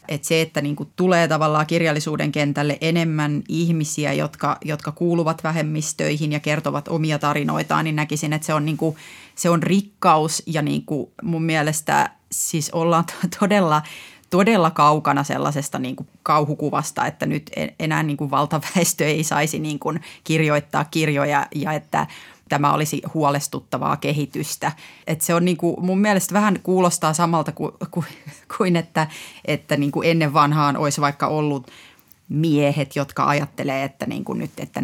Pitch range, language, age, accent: 150-170 Hz, Finnish, 30-49, native